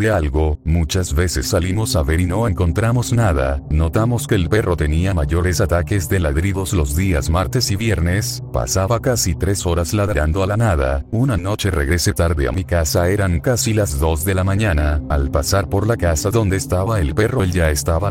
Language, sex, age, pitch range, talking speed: Spanish, male, 40-59, 85-105 Hz, 195 wpm